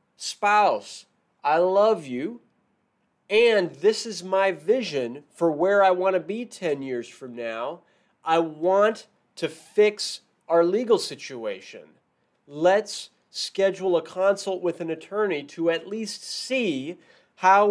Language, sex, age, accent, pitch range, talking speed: English, male, 30-49, American, 165-210 Hz, 130 wpm